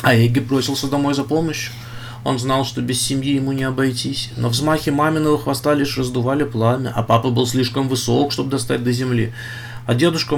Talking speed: 190 wpm